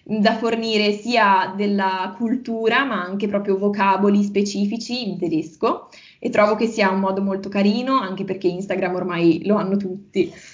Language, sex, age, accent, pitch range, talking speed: Italian, female, 20-39, native, 190-230 Hz, 155 wpm